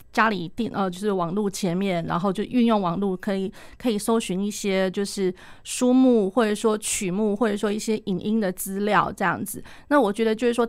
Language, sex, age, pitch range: Chinese, female, 30-49, 195-240 Hz